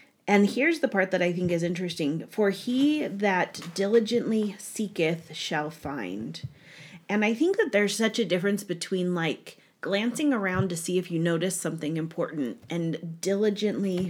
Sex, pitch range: female, 160-195 Hz